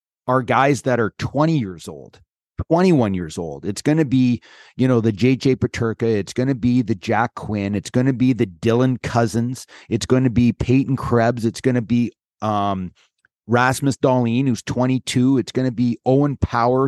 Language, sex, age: English, male, 30-49